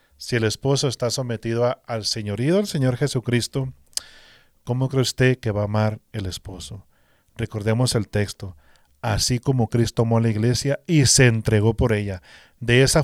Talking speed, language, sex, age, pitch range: 165 wpm, English, male, 40-59, 105-130 Hz